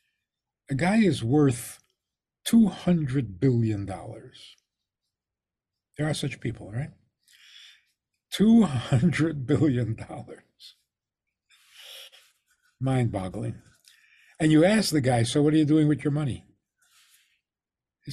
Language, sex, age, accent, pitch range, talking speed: English, male, 60-79, American, 125-185 Hz, 95 wpm